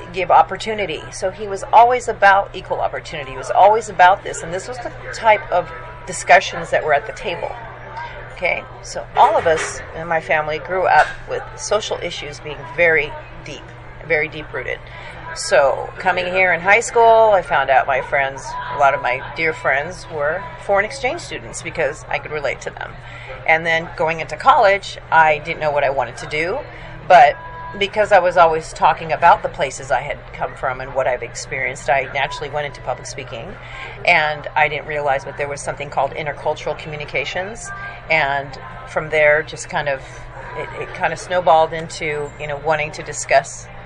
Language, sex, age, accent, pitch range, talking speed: English, female, 40-59, American, 145-190 Hz, 185 wpm